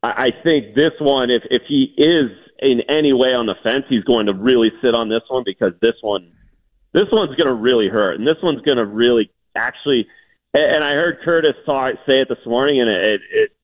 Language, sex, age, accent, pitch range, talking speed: English, male, 40-59, American, 110-160 Hz, 215 wpm